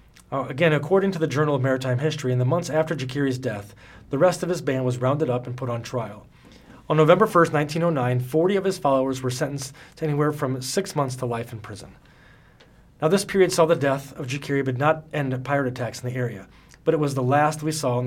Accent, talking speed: American, 235 wpm